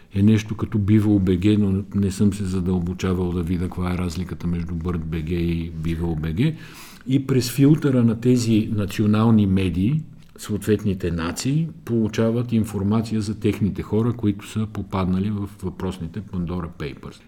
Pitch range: 95-120 Hz